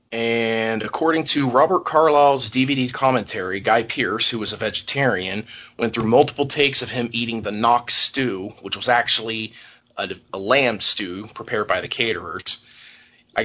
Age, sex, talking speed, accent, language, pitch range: 30-49, male, 155 wpm, American, English, 110-125 Hz